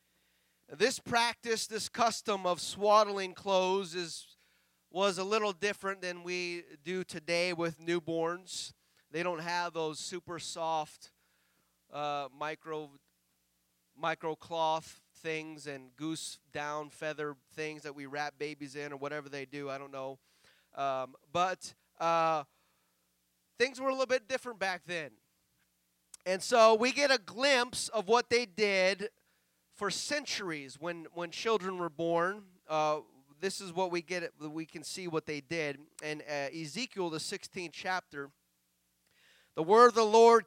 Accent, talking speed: American, 140 wpm